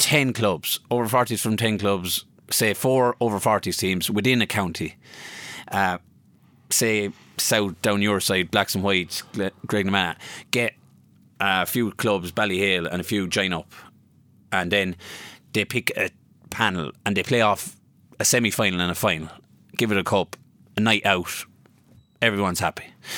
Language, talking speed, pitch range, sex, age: English, 160 wpm, 100-125 Hz, male, 20-39